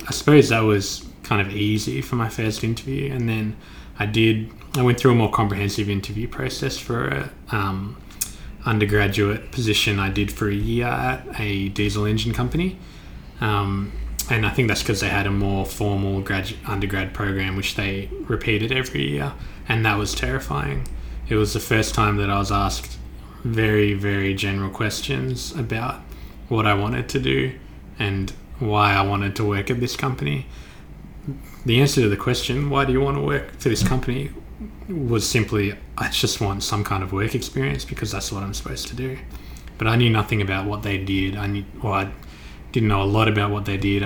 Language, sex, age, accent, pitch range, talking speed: English, male, 20-39, Australian, 100-115 Hz, 190 wpm